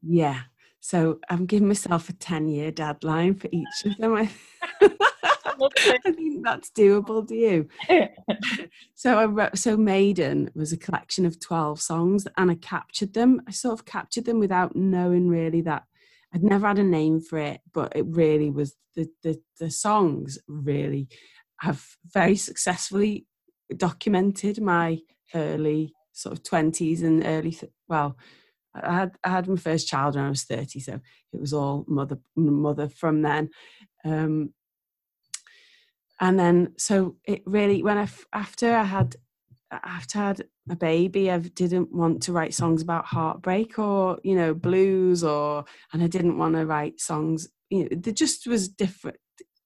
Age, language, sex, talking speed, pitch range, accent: 30-49, English, female, 160 wpm, 155-205 Hz, British